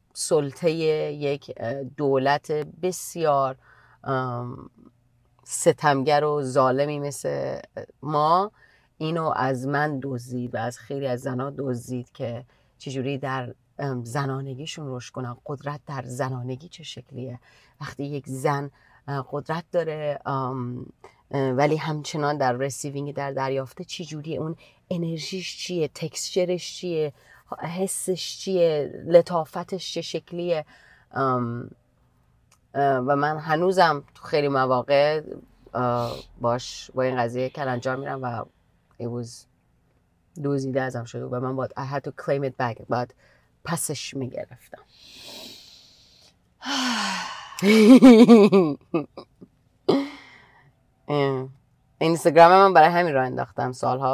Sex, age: female, 30-49